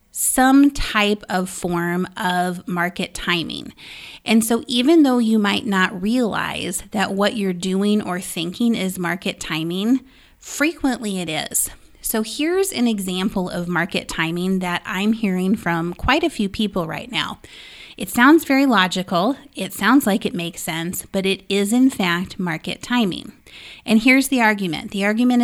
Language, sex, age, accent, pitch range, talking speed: English, female, 30-49, American, 180-225 Hz, 160 wpm